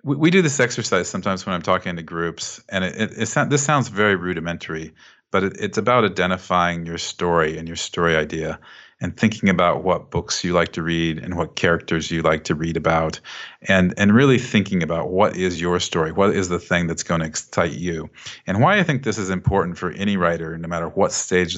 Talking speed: 215 wpm